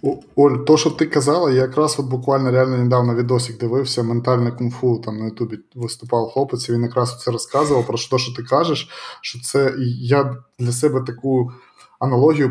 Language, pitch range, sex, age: Ukrainian, 120-135 Hz, male, 20-39